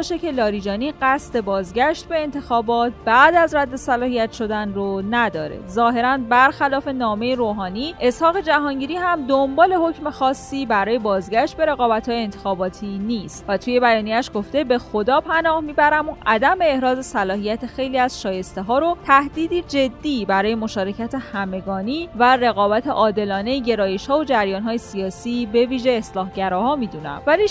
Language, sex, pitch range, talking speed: Persian, female, 210-275 Hz, 140 wpm